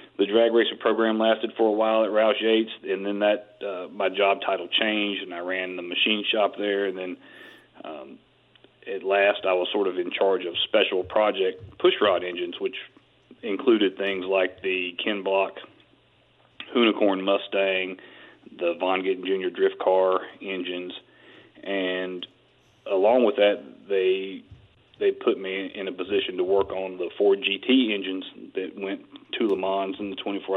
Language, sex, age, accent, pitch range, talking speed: English, male, 40-59, American, 95-150 Hz, 165 wpm